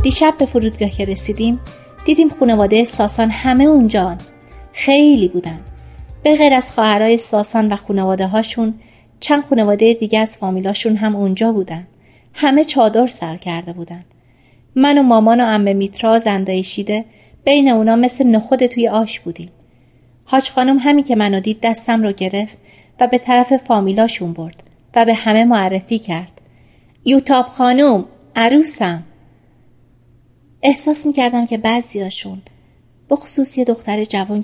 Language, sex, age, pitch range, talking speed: Persian, female, 30-49, 185-245 Hz, 135 wpm